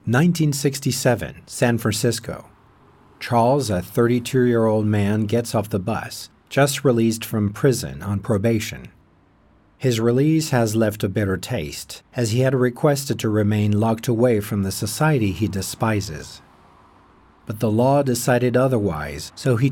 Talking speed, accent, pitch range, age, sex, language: 140 wpm, American, 105-130 Hz, 50-69, male, English